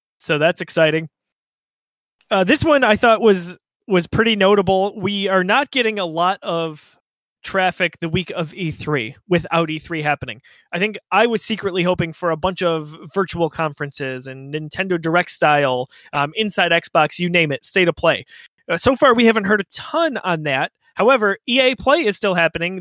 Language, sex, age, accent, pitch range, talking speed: English, male, 20-39, American, 155-190 Hz, 180 wpm